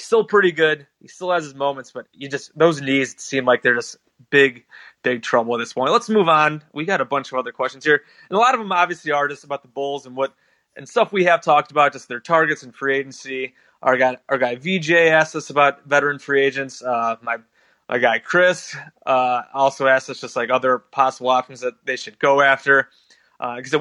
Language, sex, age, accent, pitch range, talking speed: English, male, 20-39, American, 135-175 Hz, 230 wpm